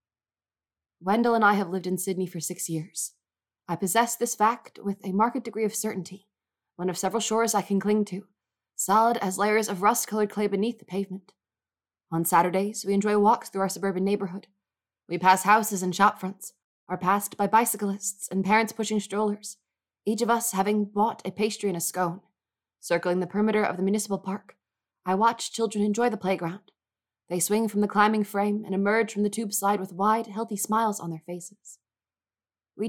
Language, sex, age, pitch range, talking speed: English, female, 20-39, 185-215 Hz, 185 wpm